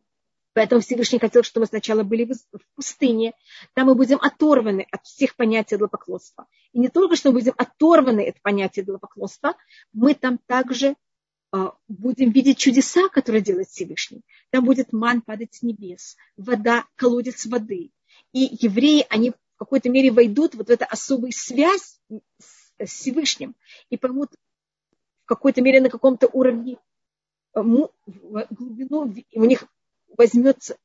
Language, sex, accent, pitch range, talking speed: Russian, female, native, 225-265 Hz, 135 wpm